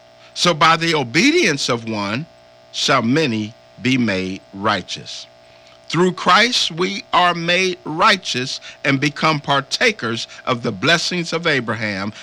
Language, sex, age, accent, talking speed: English, male, 50-69, American, 125 wpm